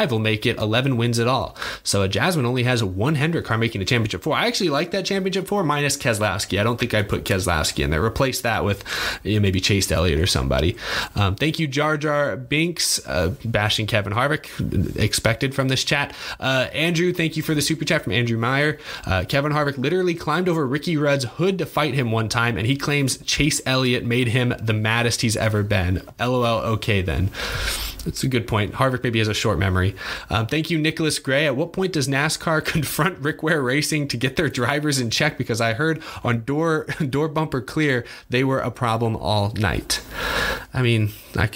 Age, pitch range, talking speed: 20-39, 110-150 Hz, 210 wpm